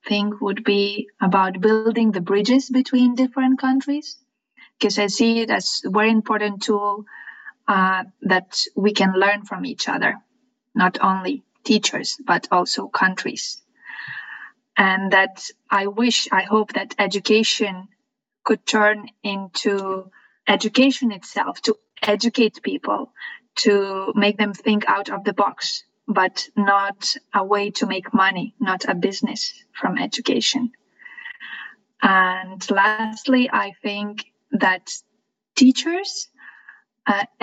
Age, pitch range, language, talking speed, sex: 20-39, 200-250 Hz, Finnish, 120 wpm, female